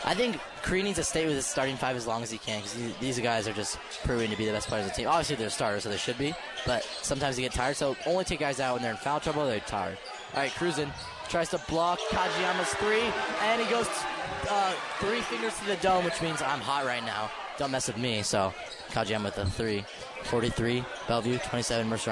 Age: 20-39